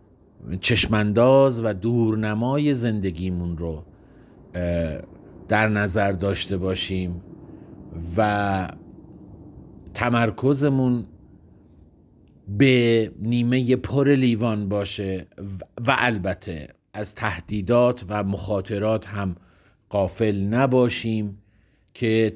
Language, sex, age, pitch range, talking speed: Persian, male, 50-69, 95-120 Hz, 70 wpm